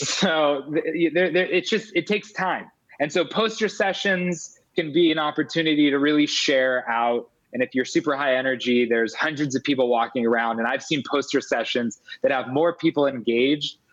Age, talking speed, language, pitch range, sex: 20-39, 170 wpm, English, 130-170 Hz, male